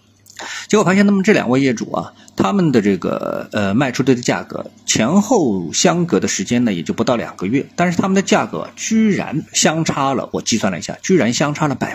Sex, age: male, 50-69